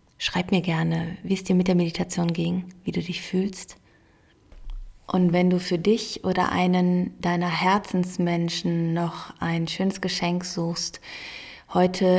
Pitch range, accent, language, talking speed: 165-185 Hz, German, German, 145 wpm